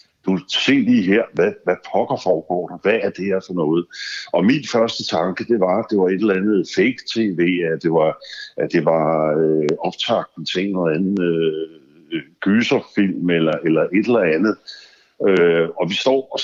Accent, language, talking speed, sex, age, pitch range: native, Danish, 190 wpm, male, 60-79, 85-110 Hz